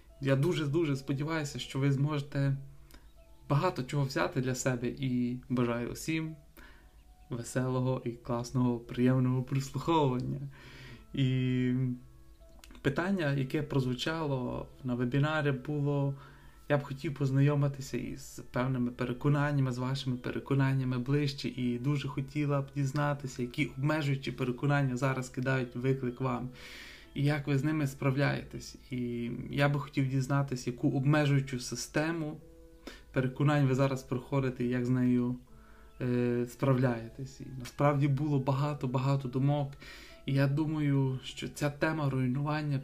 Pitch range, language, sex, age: 125-145 Hz, Ukrainian, male, 20-39